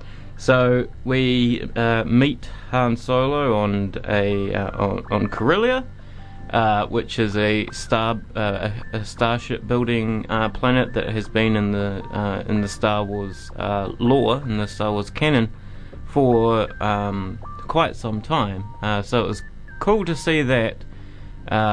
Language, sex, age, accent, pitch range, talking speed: English, male, 20-39, Australian, 100-120 Hz, 150 wpm